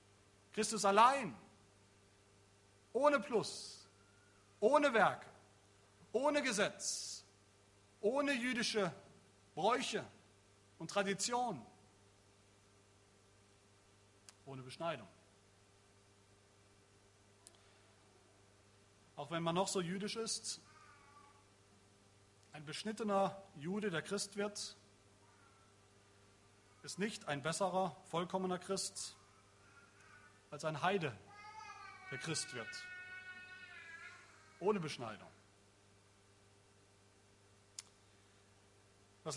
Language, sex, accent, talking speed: German, male, German, 65 wpm